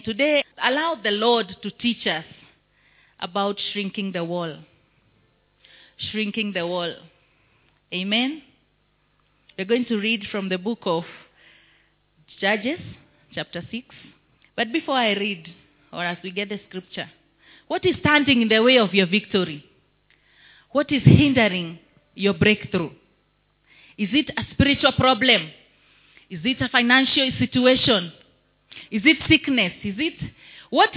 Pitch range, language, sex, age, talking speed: 195-255 Hz, English, female, 30-49, 130 wpm